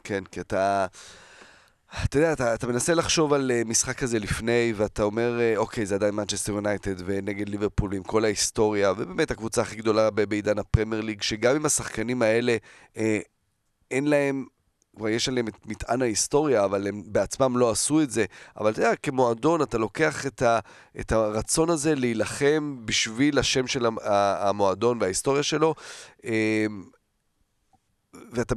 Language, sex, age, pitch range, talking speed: Hebrew, male, 30-49, 105-140 Hz, 150 wpm